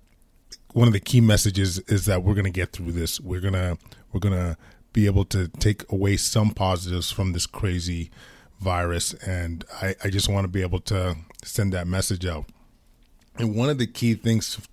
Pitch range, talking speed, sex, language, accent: 95-115 Hz, 200 wpm, male, English, American